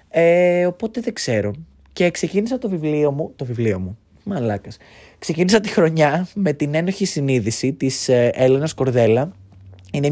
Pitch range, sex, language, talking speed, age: 115-170 Hz, male, Greek, 140 wpm, 20-39